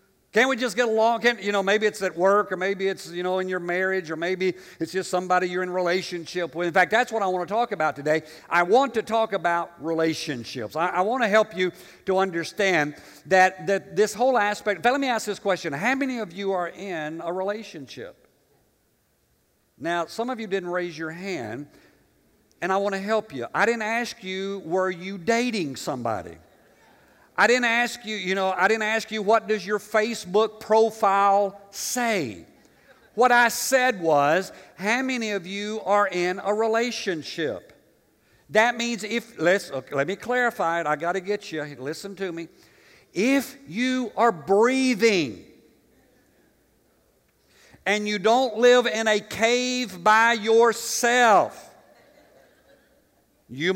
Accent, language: American, English